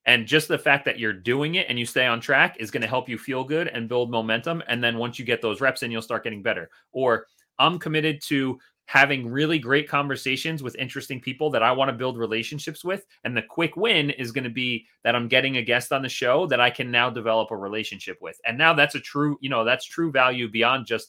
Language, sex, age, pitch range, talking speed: English, male, 30-49, 110-140 Hz, 255 wpm